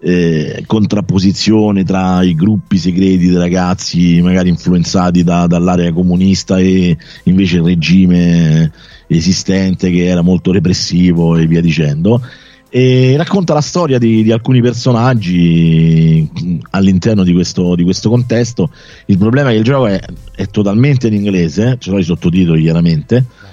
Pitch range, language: 90-130 Hz, Italian